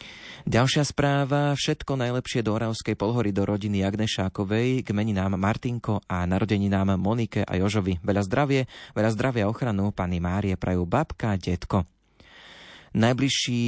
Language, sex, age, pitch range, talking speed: Slovak, male, 30-49, 95-115 Hz, 125 wpm